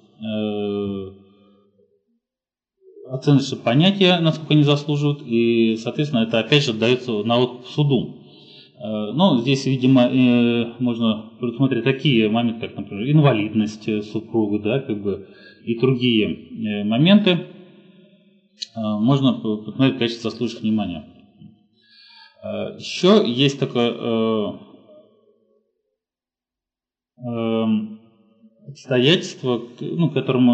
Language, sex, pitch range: Russian, male, 115-145 Hz